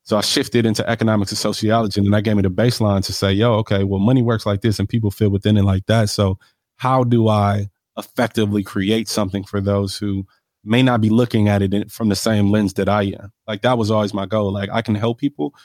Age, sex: 20-39, male